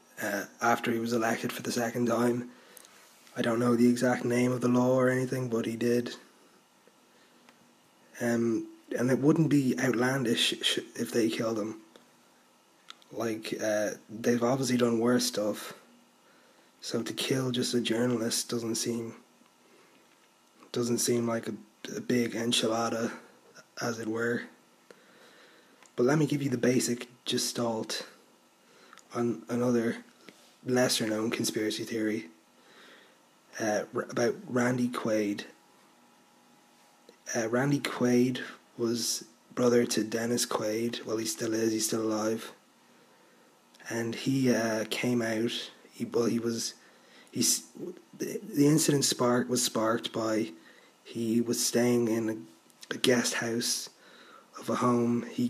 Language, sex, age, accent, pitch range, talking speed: English, male, 20-39, Irish, 115-125 Hz, 130 wpm